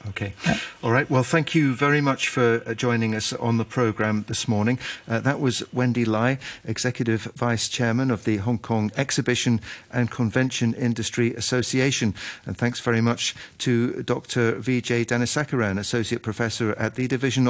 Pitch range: 110-130 Hz